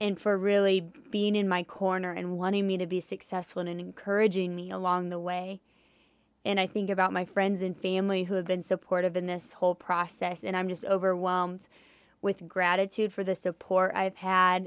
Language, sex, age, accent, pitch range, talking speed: English, female, 10-29, American, 180-195 Hz, 190 wpm